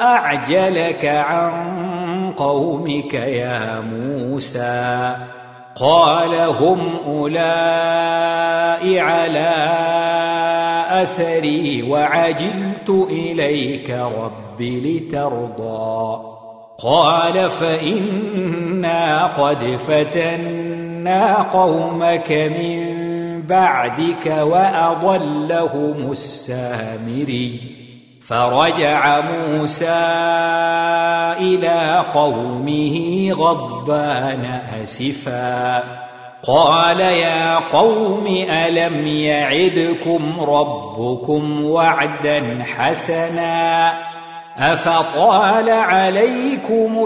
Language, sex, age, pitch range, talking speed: Arabic, male, 50-69, 140-170 Hz, 50 wpm